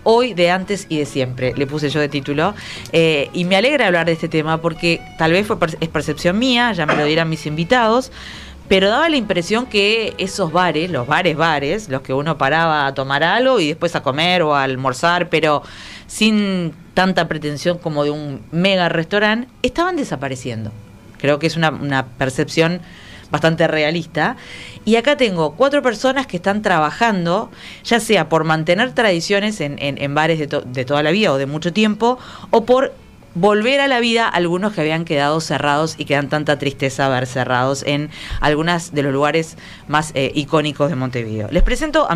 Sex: female